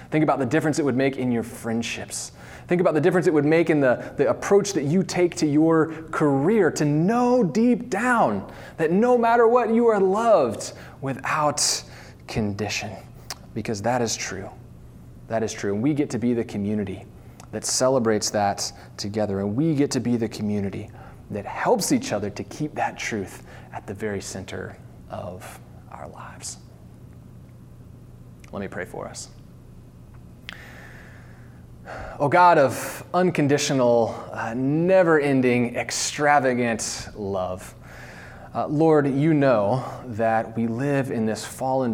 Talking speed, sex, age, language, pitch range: 145 wpm, male, 30-49, English, 110-150 Hz